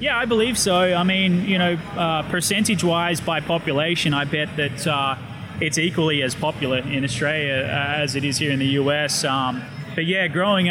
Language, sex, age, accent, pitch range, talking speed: English, male, 20-39, Australian, 140-165 Hz, 190 wpm